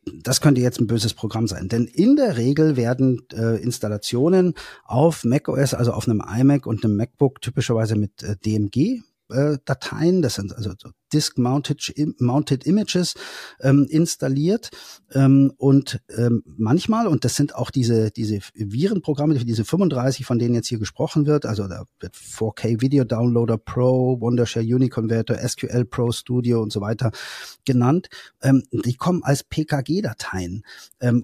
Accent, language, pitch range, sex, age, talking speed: German, German, 115-145 Hz, male, 40-59, 150 wpm